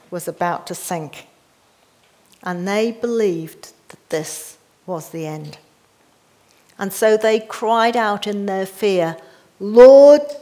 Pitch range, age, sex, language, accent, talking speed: 190-260 Hz, 50-69, female, English, British, 120 wpm